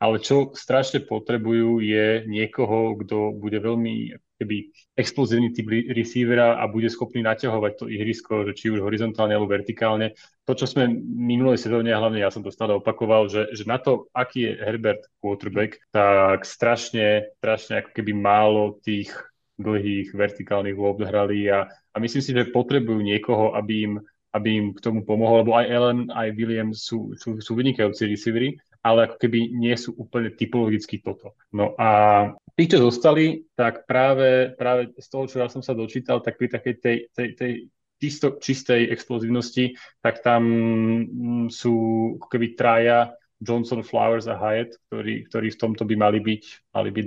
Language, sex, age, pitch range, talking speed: Slovak, male, 30-49, 105-120 Hz, 165 wpm